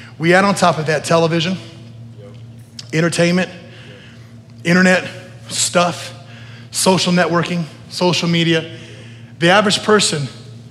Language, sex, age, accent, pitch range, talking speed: English, male, 30-49, American, 120-195 Hz, 95 wpm